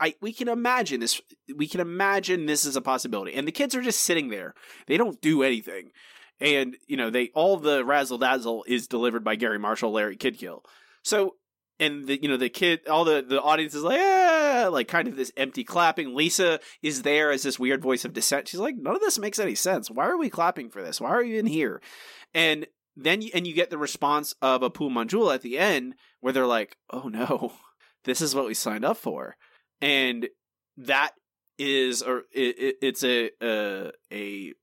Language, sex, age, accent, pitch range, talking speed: English, male, 30-49, American, 125-170 Hz, 210 wpm